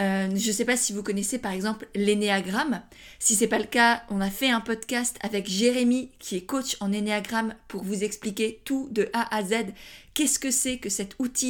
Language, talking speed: French, 225 wpm